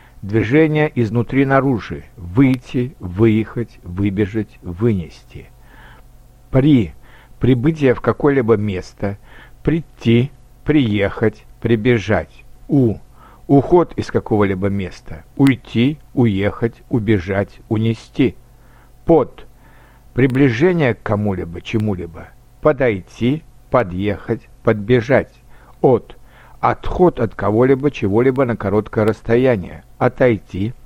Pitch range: 105-130 Hz